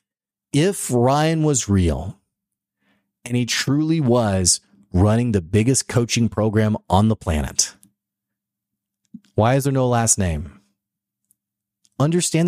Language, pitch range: English, 100-130 Hz